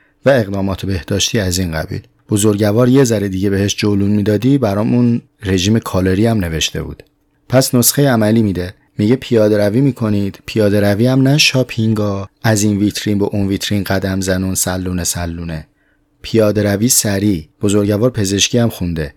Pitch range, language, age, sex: 95-120 Hz, Persian, 30-49, male